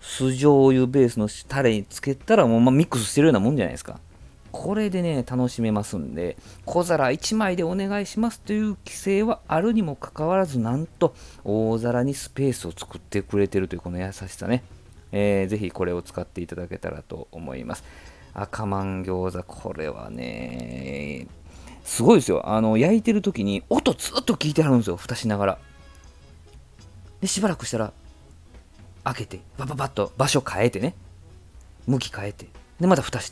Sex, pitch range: male, 90-130 Hz